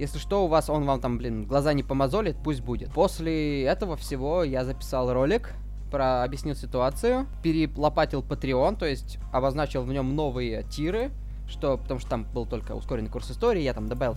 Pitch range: 120-150 Hz